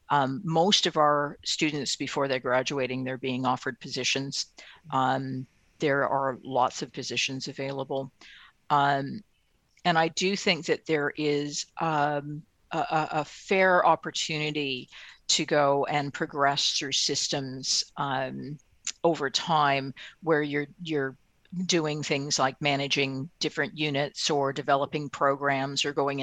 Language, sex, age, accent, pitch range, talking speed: English, female, 50-69, American, 140-160 Hz, 125 wpm